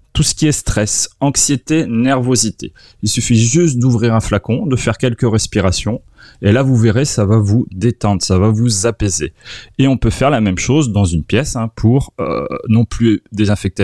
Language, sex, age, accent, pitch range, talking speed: French, male, 30-49, French, 100-130 Hz, 195 wpm